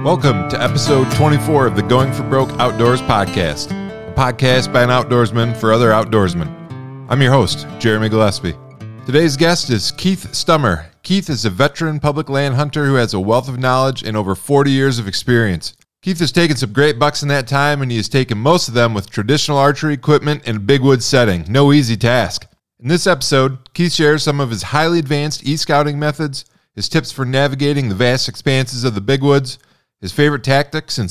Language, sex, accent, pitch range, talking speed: English, male, American, 115-145 Hz, 200 wpm